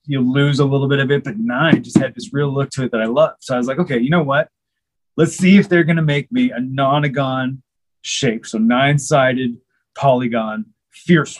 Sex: male